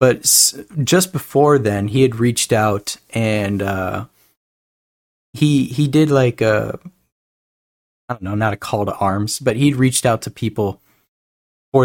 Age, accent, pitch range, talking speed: 20-39, American, 105-135 Hz, 150 wpm